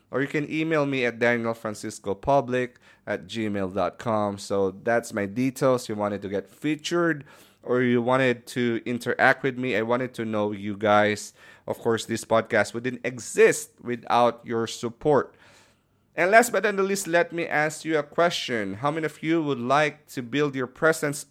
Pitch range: 110-150 Hz